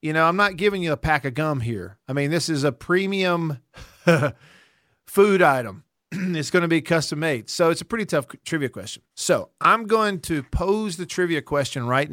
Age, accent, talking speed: 50-69, American, 205 wpm